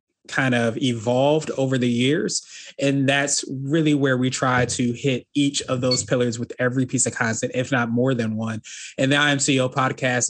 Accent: American